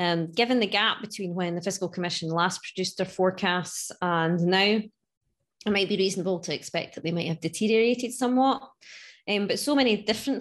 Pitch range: 165-215 Hz